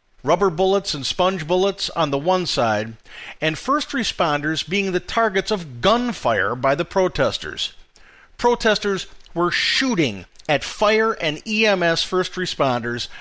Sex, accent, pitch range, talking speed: male, American, 140-195 Hz, 130 wpm